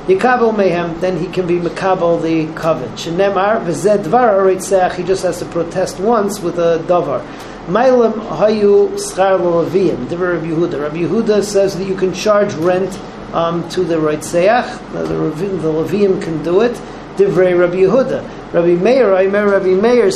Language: English